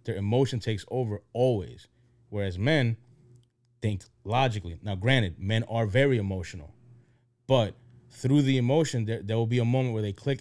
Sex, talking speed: male, 160 wpm